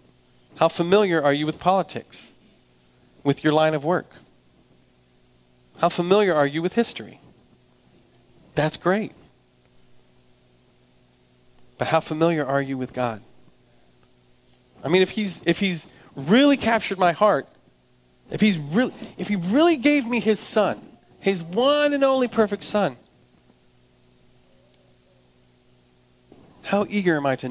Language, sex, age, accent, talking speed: English, male, 40-59, American, 125 wpm